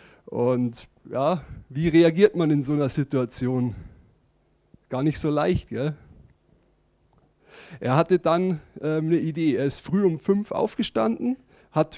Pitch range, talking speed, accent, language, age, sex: 150-185 Hz, 135 wpm, German, English, 30-49, male